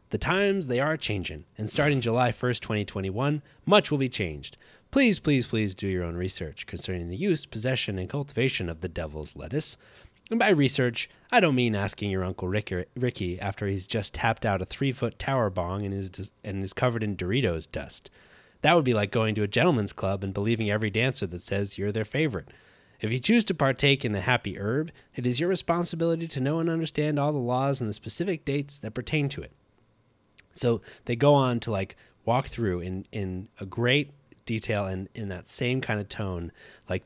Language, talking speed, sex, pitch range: English, 200 wpm, male, 100-140 Hz